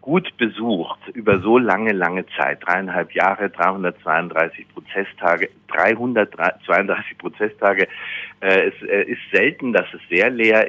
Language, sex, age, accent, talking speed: German, male, 50-69, German, 110 wpm